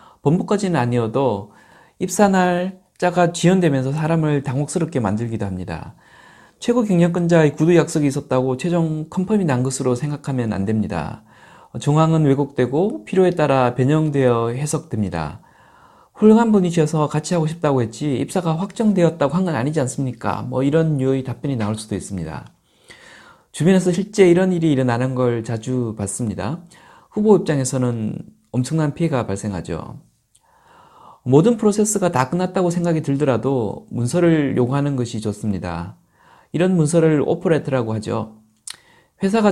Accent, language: native, Korean